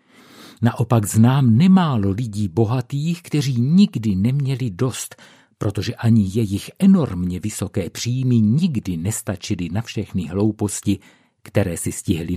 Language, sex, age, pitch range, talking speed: Czech, male, 50-69, 100-140 Hz, 110 wpm